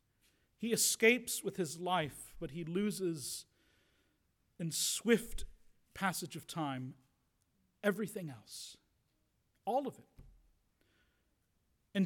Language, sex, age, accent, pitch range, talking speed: English, male, 40-59, American, 160-230 Hz, 95 wpm